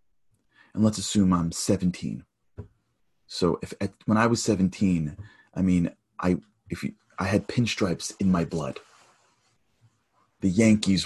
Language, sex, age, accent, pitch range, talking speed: English, male, 30-49, American, 85-100 Hz, 135 wpm